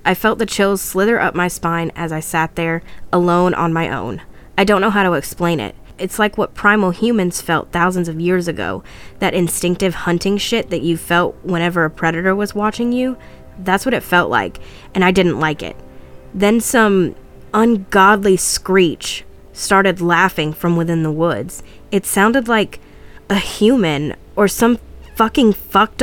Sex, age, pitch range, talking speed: female, 20-39, 165-200 Hz, 175 wpm